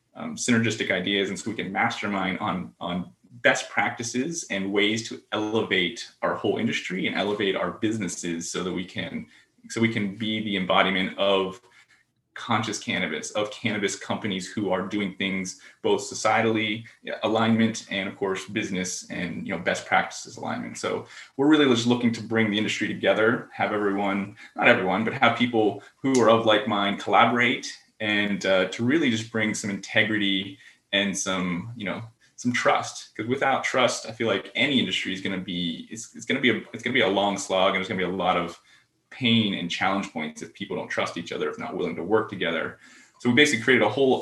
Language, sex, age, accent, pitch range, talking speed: English, male, 20-39, American, 95-115 Hz, 200 wpm